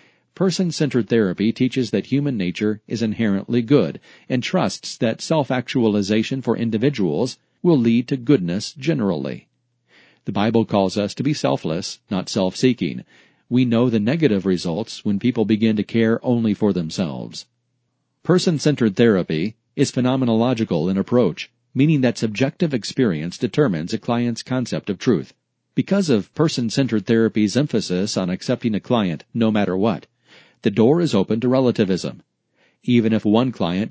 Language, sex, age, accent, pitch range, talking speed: English, male, 40-59, American, 105-130 Hz, 140 wpm